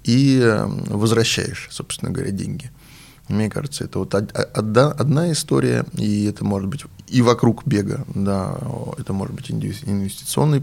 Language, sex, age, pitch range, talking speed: Russian, male, 20-39, 100-130 Hz, 130 wpm